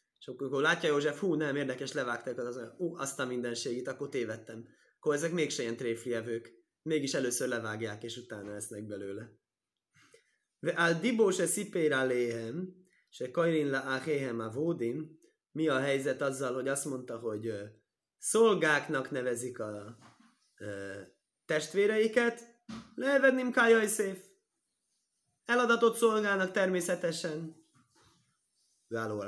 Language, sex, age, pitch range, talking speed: Hungarian, male, 20-39, 125-185 Hz, 115 wpm